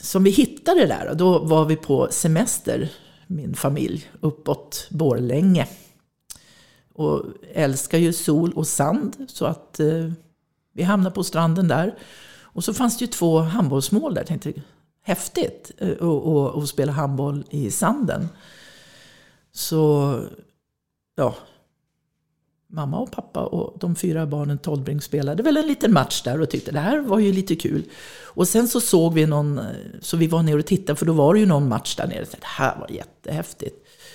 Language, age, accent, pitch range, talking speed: Swedish, 50-69, native, 150-195 Hz, 170 wpm